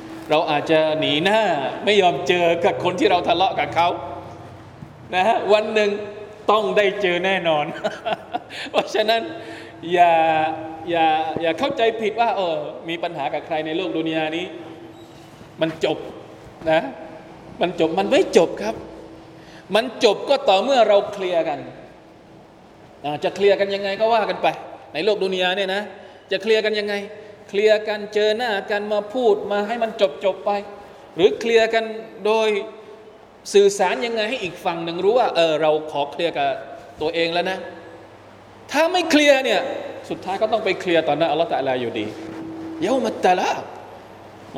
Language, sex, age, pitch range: Thai, male, 20-39, 155-210 Hz